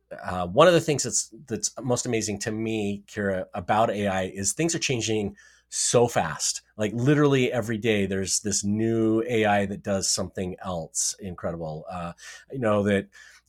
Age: 30-49